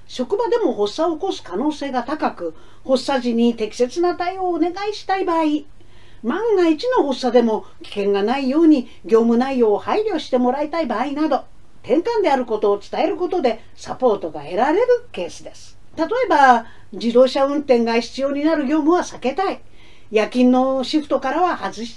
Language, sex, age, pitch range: Japanese, female, 50-69, 235-370 Hz